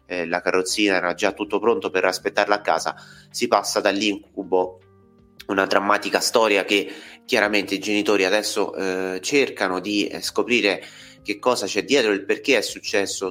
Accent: native